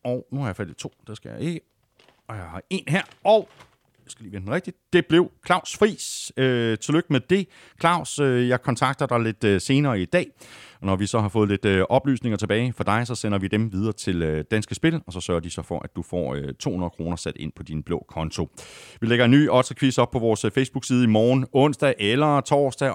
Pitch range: 95-135 Hz